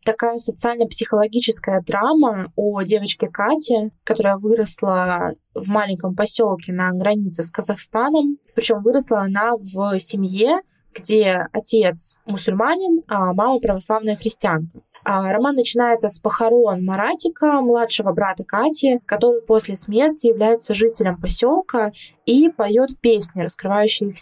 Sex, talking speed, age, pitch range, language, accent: female, 115 wpm, 20-39, 195-230 Hz, Russian, native